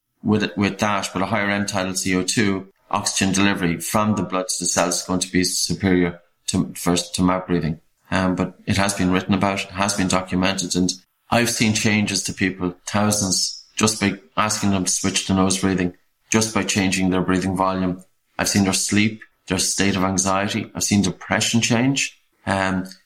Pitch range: 95-105 Hz